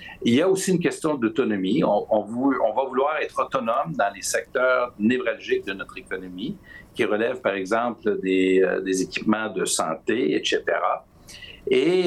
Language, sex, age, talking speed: French, male, 60-79, 170 wpm